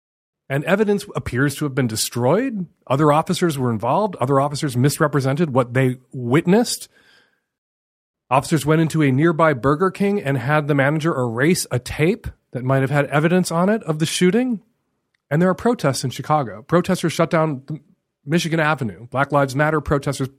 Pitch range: 125-170 Hz